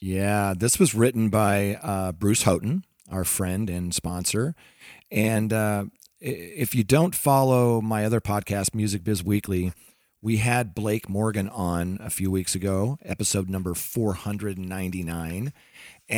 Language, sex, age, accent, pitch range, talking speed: English, male, 40-59, American, 105-130 Hz, 135 wpm